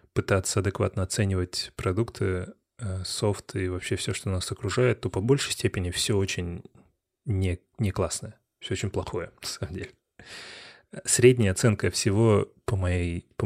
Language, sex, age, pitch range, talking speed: Russian, male, 20-39, 95-115 Hz, 140 wpm